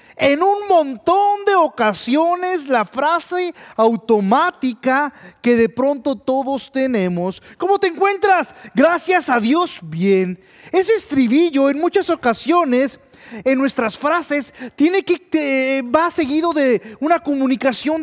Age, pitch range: 30-49, 255-350 Hz